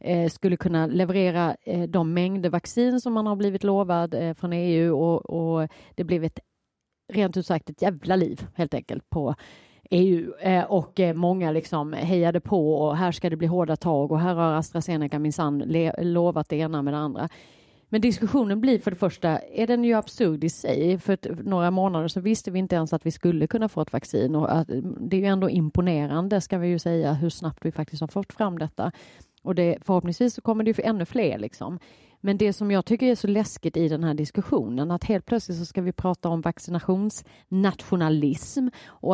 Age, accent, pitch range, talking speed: 30-49, native, 160-195 Hz, 200 wpm